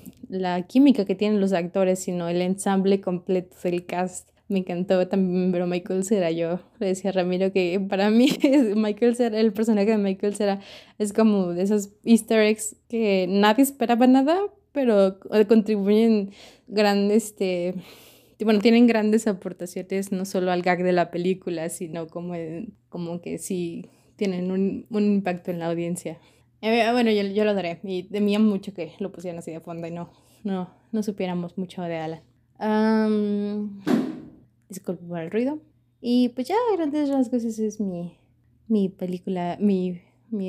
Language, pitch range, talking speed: Spanish, 180-215 Hz, 165 wpm